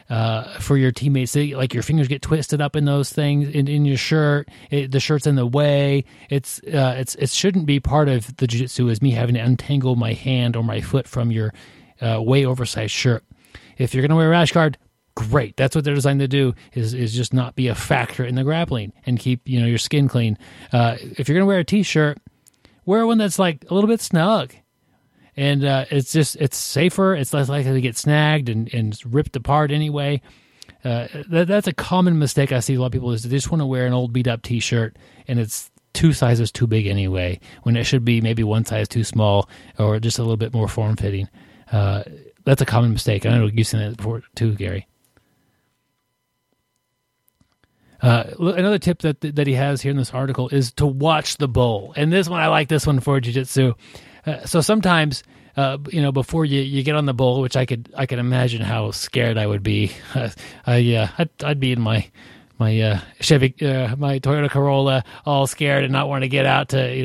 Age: 30-49